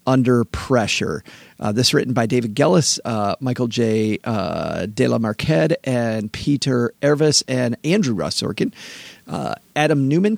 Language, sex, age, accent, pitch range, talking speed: English, male, 40-59, American, 120-150 Hz, 145 wpm